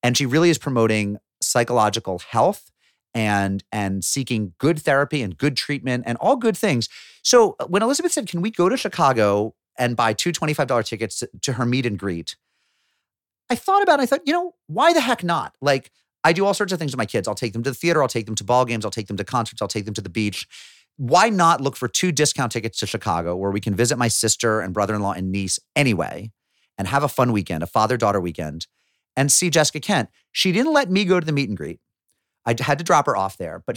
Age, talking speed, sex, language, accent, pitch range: 30-49, 240 wpm, male, English, American, 105-150 Hz